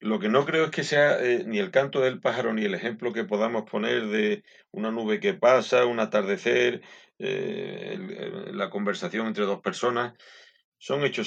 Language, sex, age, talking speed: Spanish, male, 40-59, 190 wpm